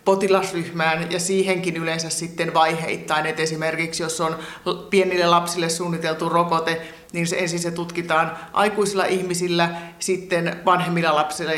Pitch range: 165-200 Hz